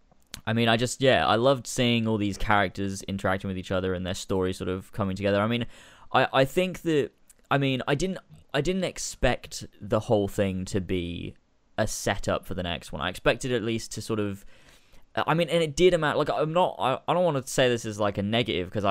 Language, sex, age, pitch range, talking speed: English, male, 10-29, 100-135 Hz, 235 wpm